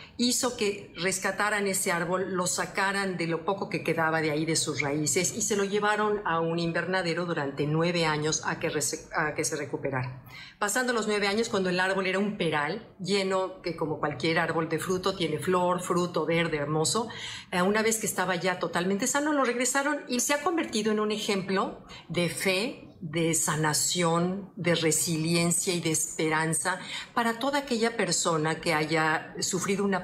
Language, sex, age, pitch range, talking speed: Spanish, female, 50-69, 160-205 Hz, 175 wpm